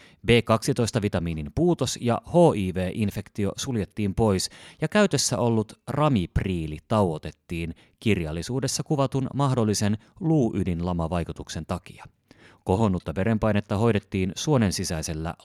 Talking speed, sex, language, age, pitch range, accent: 80 wpm, male, Finnish, 30-49, 90-120 Hz, native